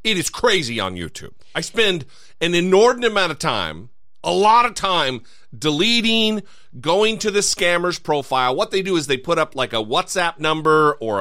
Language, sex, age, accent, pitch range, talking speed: English, male, 40-59, American, 125-185 Hz, 180 wpm